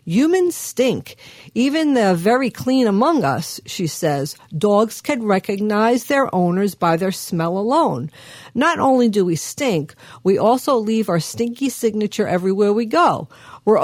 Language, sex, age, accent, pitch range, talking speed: English, female, 50-69, American, 195-265 Hz, 145 wpm